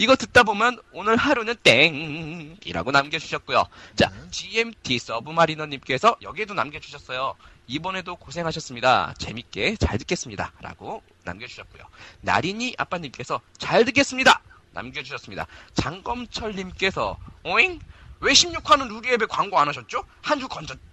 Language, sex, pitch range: English, male, 155-250 Hz